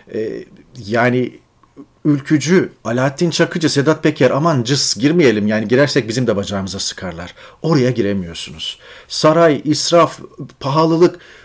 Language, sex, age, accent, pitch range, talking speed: Turkish, male, 40-59, native, 115-175 Hz, 105 wpm